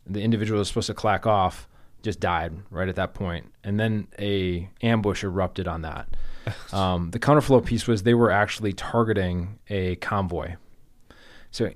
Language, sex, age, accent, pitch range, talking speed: English, male, 20-39, American, 95-115 Hz, 170 wpm